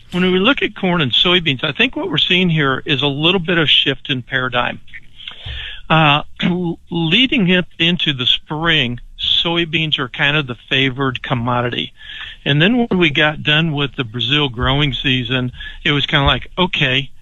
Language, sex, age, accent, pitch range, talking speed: English, male, 60-79, American, 135-165 Hz, 180 wpm